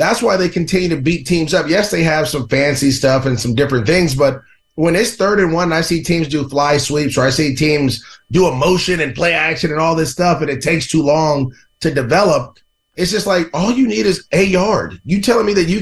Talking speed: 245 wpm